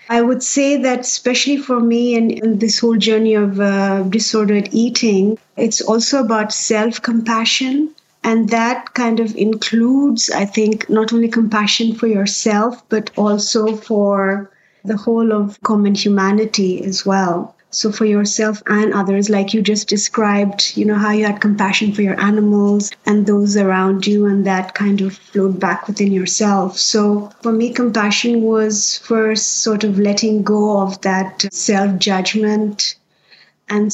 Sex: female